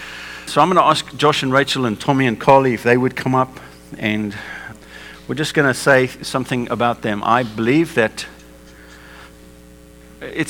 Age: 50-69